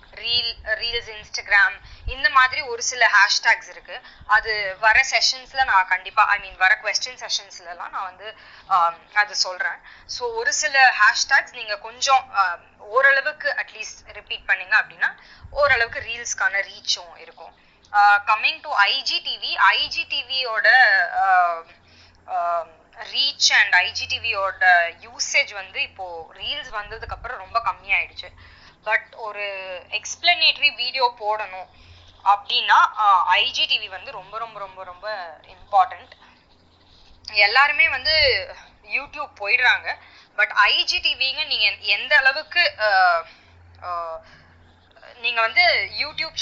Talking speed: 70 wpm